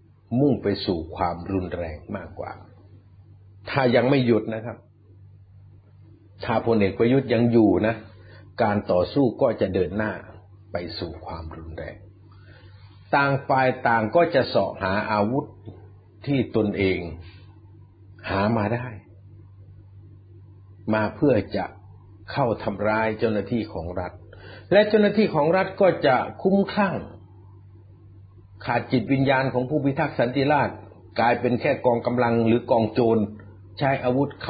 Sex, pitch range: male, 100-140 Hz